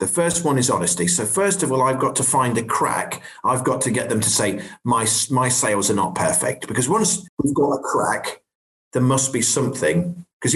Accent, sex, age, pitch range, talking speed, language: British, male, 40-59, 130-185 Hz, 220 wpm, English